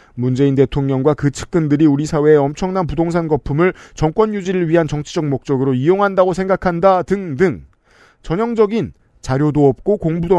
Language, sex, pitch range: Korean, male, 135-175 Hz